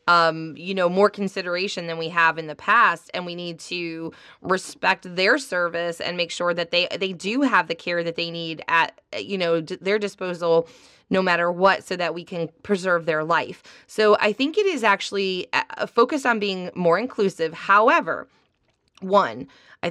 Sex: female